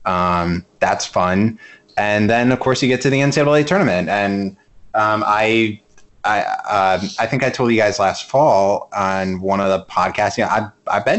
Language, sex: English, male